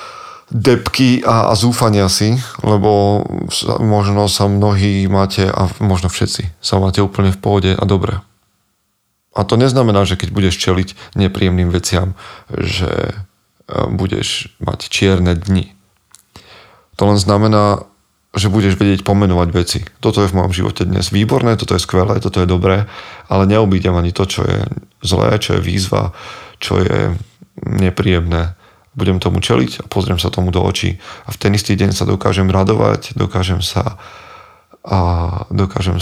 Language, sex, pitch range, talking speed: Slovak, male, 95-105 Hz, 145 wpm